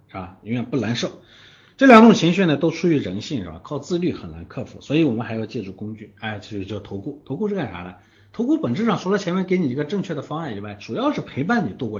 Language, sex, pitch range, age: Chinese, male, 105-165 Hz, 50-69